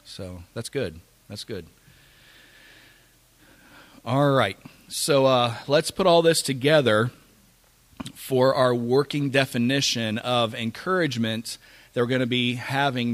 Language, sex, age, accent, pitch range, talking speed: English, male, 40-59, American, 110-135 Hz, 120 wpm